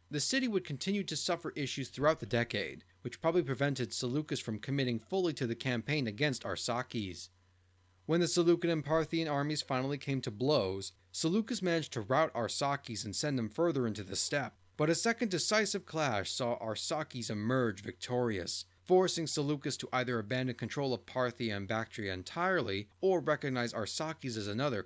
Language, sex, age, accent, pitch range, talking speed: English, male, 30-49, American, 105-150 Hz, 165 wpm